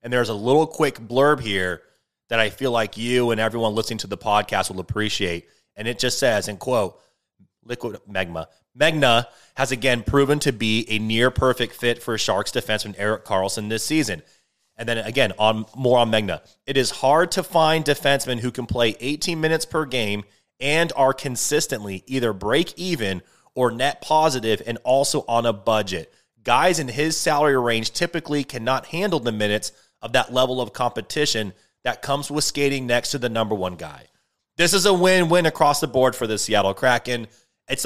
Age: 30-49